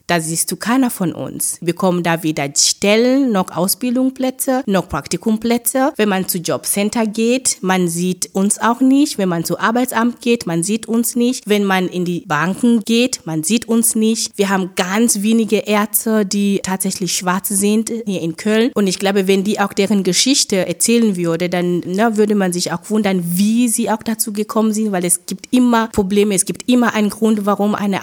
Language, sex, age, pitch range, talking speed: German, female, 20-39, 185-225 Hz, 195 wpm